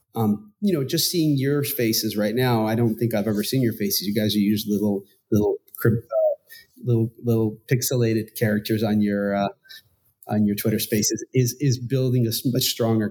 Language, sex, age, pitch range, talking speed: English, male, 30-49, 110-130 Hz, 190 wpm